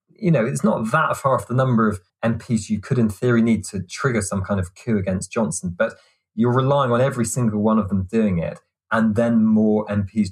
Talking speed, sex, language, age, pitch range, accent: 225 wpm, male, English, 20-39, 100-125 Hz, British